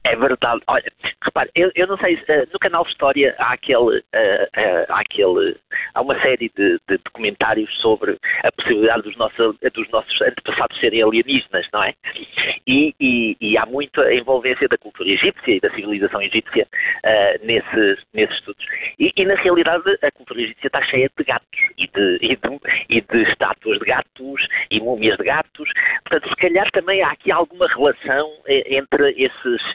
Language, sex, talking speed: Portuguese, male, 165 wpm